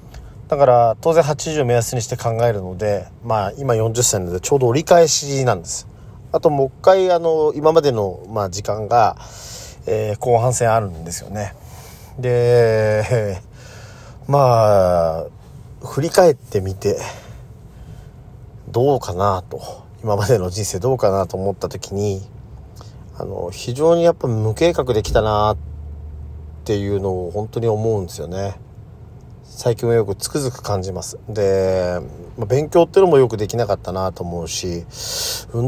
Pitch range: 100-130 Hz